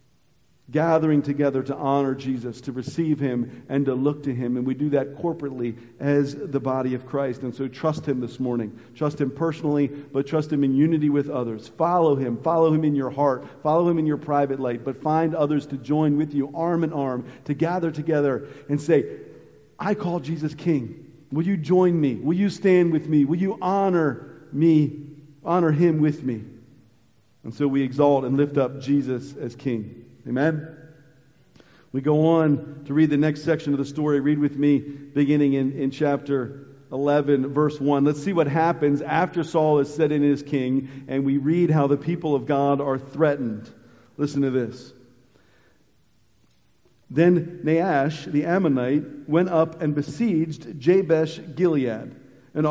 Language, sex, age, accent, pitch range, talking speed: English, male, 50-69, American, 135-160 Hz, 175 wpm